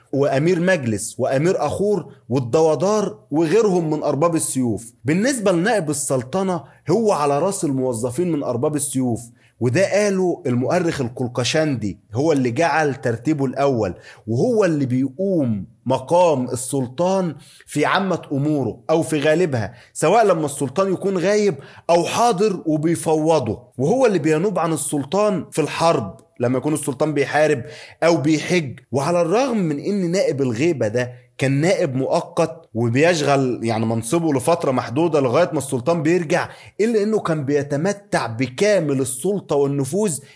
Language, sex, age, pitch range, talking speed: Arabic, male, 30-49, 130-175 Hz, 130 wpm